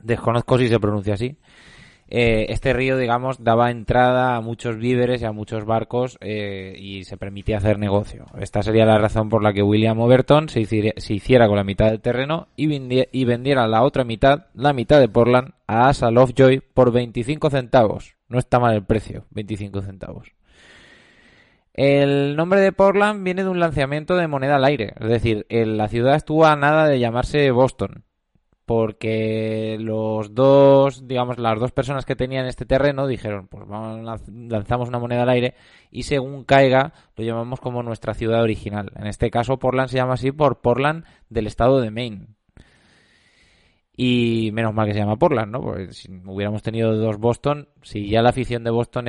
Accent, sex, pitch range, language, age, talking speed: Spanish, male, 110-135 Hz, Spanish, 20-39, 180 wpm